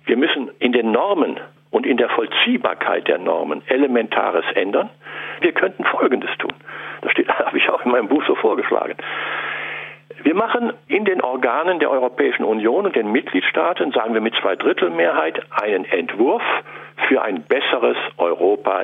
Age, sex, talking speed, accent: 60-79, male, 155 wpm, German